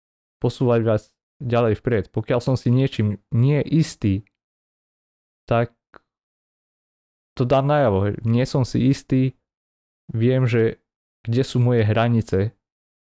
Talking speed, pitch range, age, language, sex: 110 wpm, 95-115 Hz, 20-39, Slovak, male